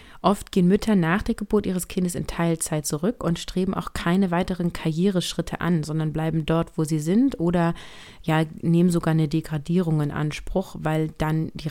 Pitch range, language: 155-195 Hz, German